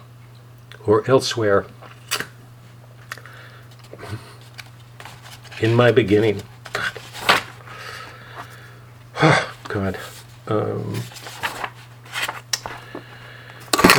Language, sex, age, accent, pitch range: English, male, 50-69, American, 105-125 Hz